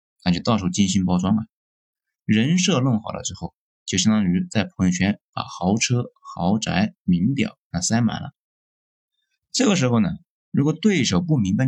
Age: 20-39